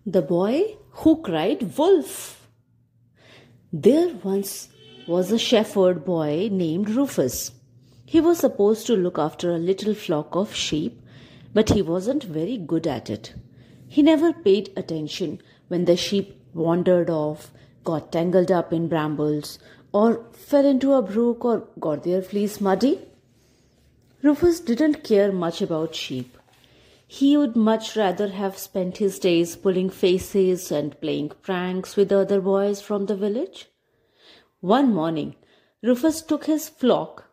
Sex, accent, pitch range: female, Indian, 165-230 Hz